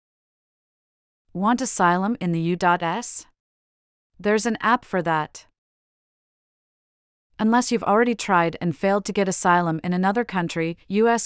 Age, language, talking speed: 30-49, English, 125 wpm